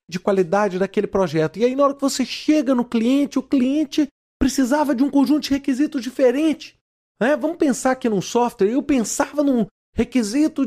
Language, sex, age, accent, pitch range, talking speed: Portuguese, male, 40-59, Brazilian, 200-275 Hz, 175 wpm